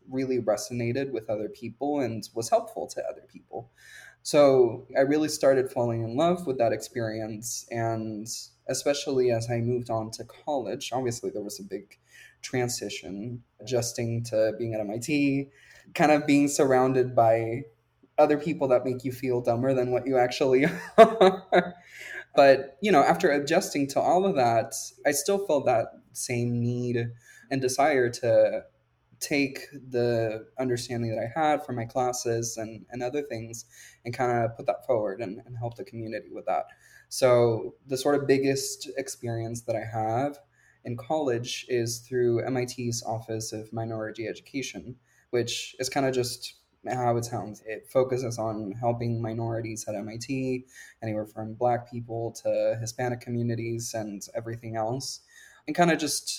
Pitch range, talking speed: 115-135 Hz, 155 wpm